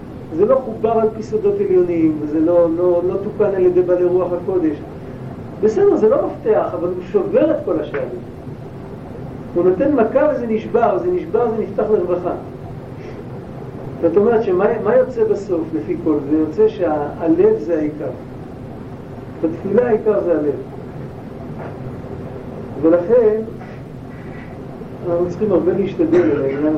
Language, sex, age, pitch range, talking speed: Hebrew, male, 50-69, 135-220 Hz, 130 wpm